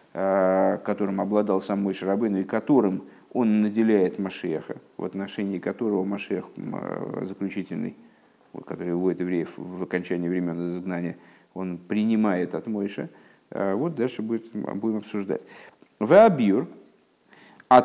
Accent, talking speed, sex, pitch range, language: native, 110 wpm, male, 100-135 Hz, Russian